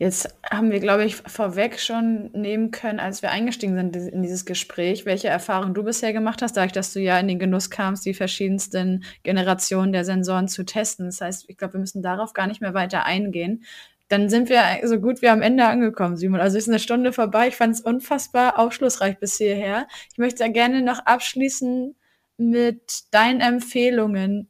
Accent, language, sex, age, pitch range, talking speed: German, German, female, 20-39, 195-230 Hz, 200 wpm